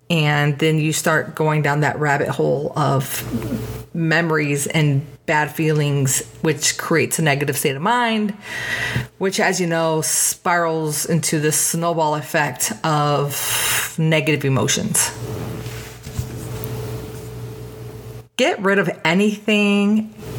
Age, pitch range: 30-49, 115-185 Hz